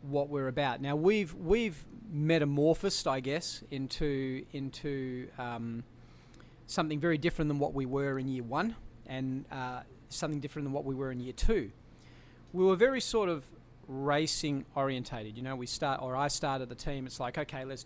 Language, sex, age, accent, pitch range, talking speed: English, male, 40-59, Australian, 125-150 Hz, 180 wpm